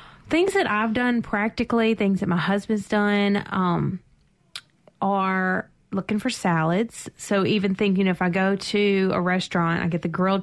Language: English